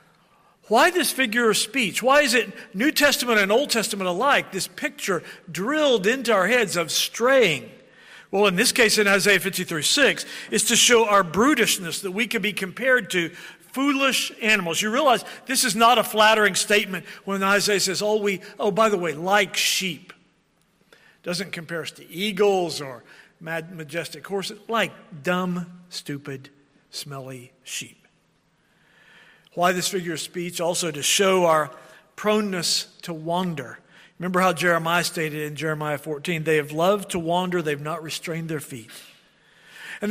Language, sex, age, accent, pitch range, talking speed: English, male, 50-69, American, 170-215 Hz, 160 wpm